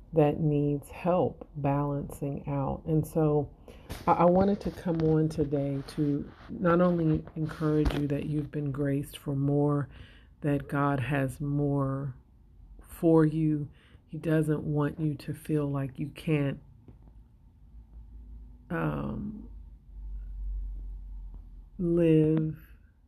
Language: English